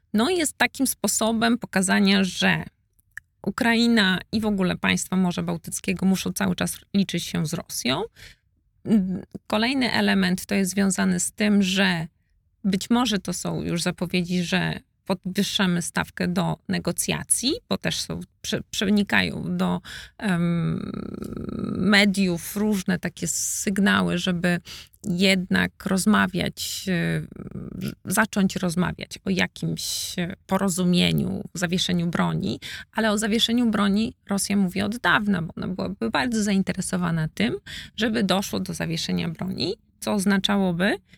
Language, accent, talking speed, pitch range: Polish, native, 115 wpm, 180-210 Hz